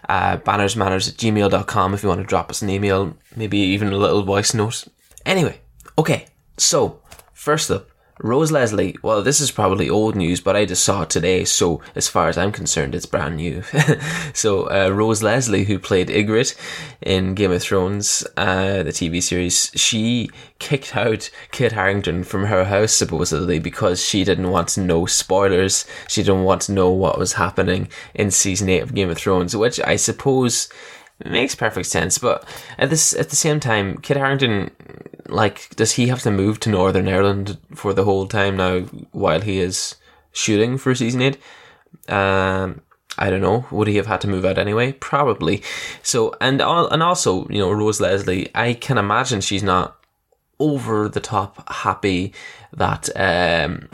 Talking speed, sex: 180 wpm, male